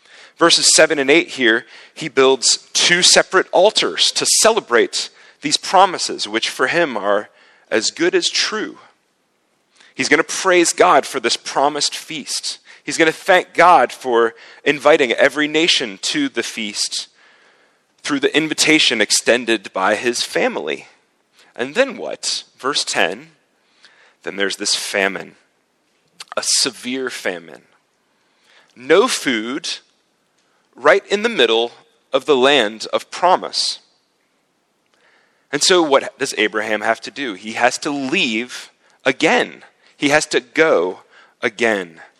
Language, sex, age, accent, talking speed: English, male, 40-59, American, 130 wpm